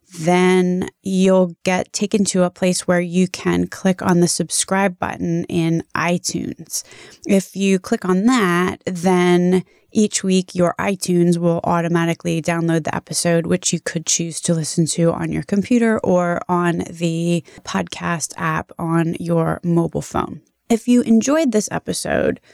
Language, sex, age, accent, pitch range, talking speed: English, female, 20-39, American, 170-195 Hz, 150 wpm